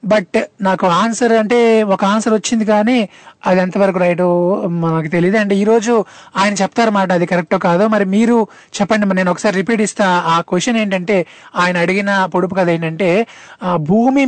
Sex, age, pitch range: male, 20-39, 185-225 Hz